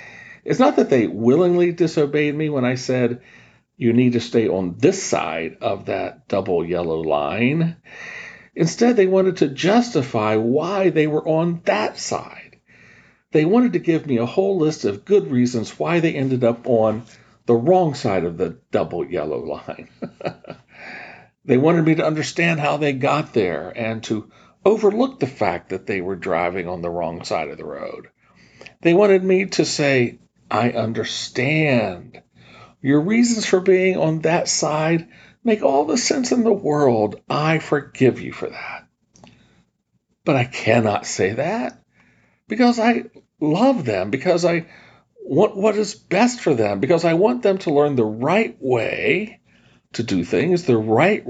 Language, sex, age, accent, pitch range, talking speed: English, male, 50-69, American, 125-190 Hz, 165 wpm